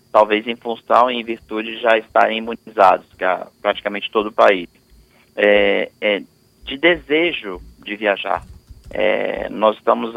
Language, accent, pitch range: Portuguese, Brazilian, 115-185 Hz